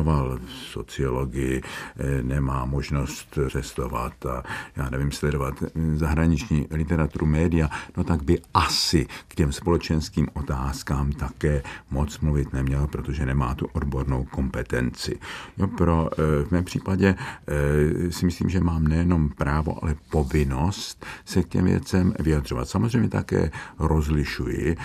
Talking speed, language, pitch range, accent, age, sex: 120 wpm, Czech, 70-85 Hz, native, 50-69, male